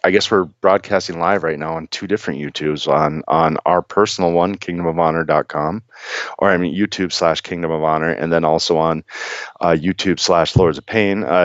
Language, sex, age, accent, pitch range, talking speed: English, male, 40-59, American, 85-100 Hz, 200 wpm